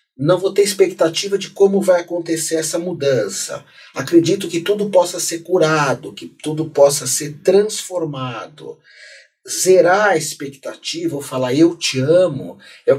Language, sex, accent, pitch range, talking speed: Portuguese, male, Brazilian, 140-185 Hz, 145 wpm